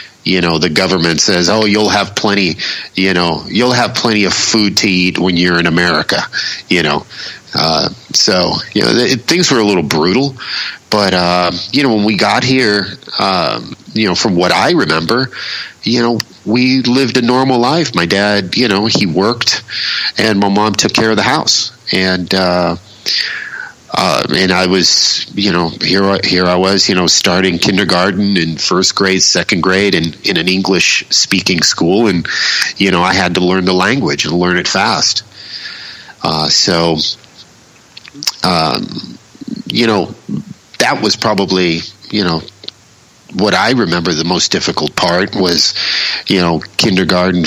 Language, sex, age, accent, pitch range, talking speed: English, male, 40-59, American, 85-105 Hz, 165 wpm